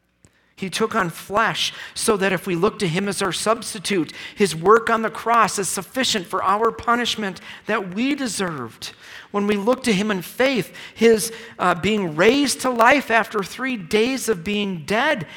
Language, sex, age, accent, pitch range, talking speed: English, male, 50-69, American, 175-230 Hz, 180 wpm